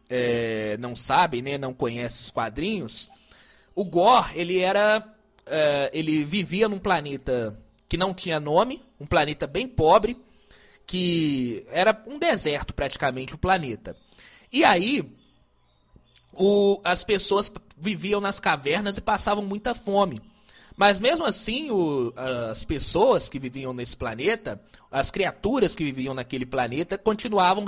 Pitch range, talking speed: 145-215 Hz, 130 wpm